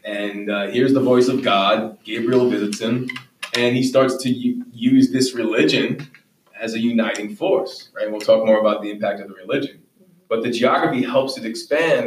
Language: English